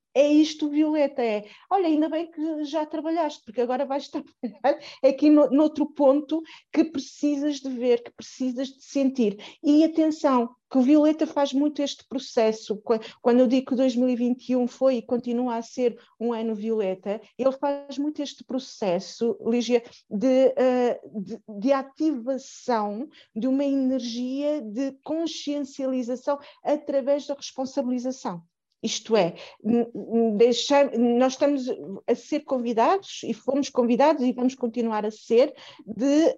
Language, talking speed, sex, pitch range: Portuguese, 135 wpm, female, 225-285 Hz